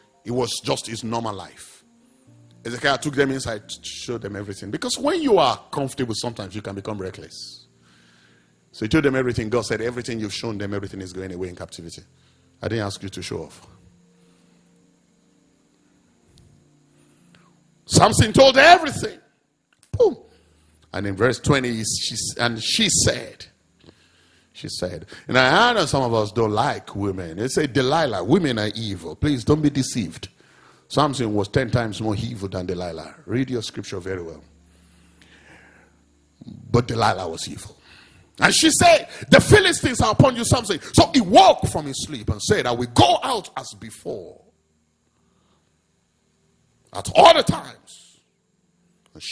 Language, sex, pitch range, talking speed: English, male, 90-125 Hz, 155 wpm